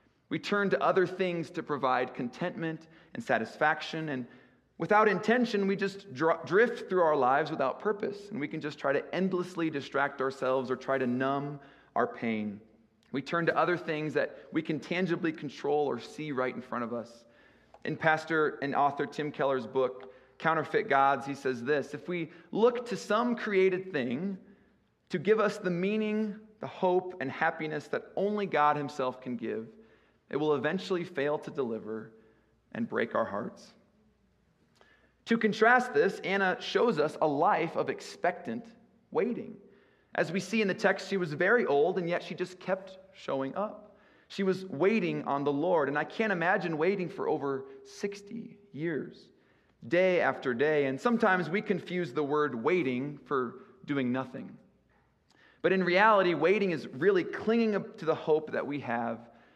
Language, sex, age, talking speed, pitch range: English, male, 30-49, 165 wpm, 140-195 Hz